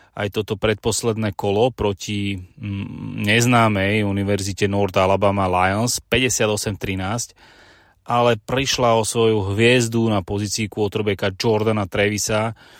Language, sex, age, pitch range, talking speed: Slovak, male, 30-49, 100-115 Hz, 100 wpm